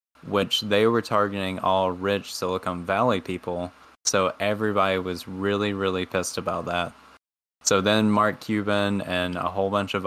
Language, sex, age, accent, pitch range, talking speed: English, male, 10-29, American, 90-105 Hz, 155 wpm